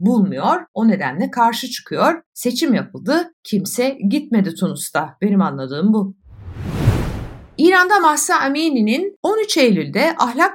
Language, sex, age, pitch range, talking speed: Turkish, female, 60-79, 185-275 Hz, 110 wpm